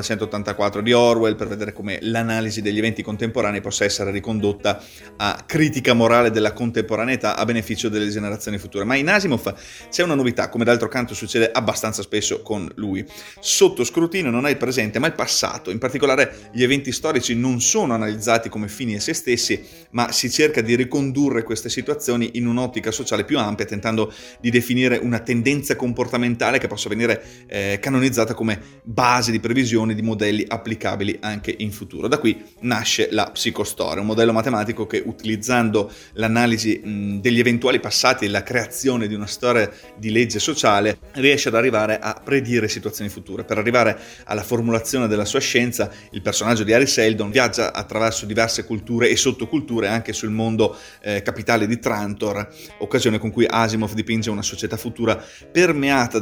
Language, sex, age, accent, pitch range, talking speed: Italian, male, 30-49, native, 105-120 Hz, 165 wpm